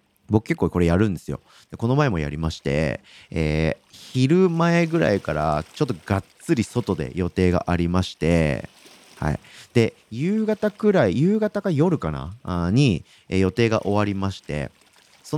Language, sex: Japanese, male